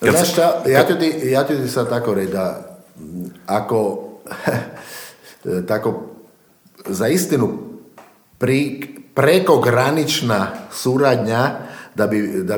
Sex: male